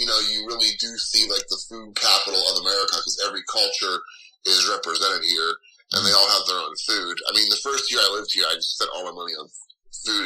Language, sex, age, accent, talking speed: English, male, 30-49, American, 240 wpm